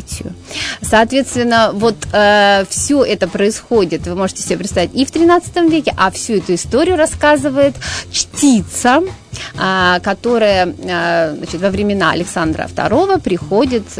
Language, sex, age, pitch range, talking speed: Russian, female, 30-49, 200-255 Hz, 115 wpm